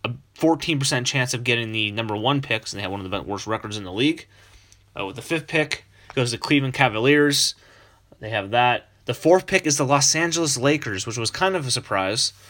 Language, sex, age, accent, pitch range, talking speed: English, male, 30-49, American, 100-140 Hz, 220 wpm